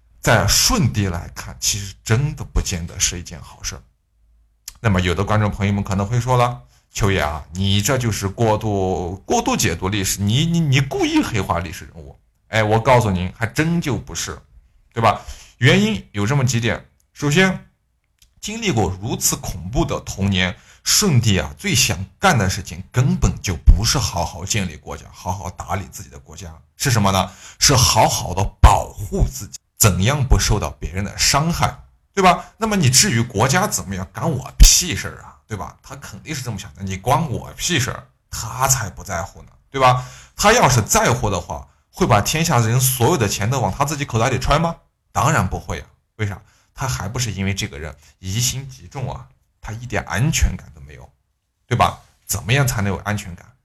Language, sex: Chinese, male